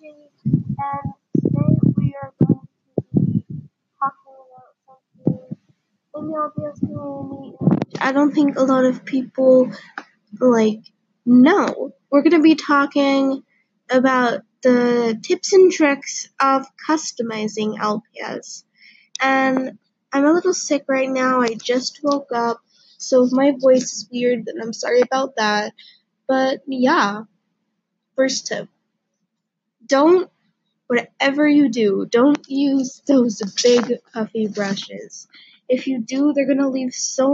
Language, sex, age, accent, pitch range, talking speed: English, female, 20-39, American, 215-275 Hz, 125 wpm